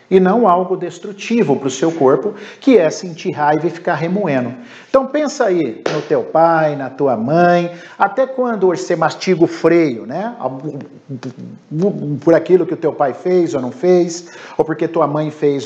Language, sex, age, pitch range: Portuguese, male, 50-69, 135-180 Hz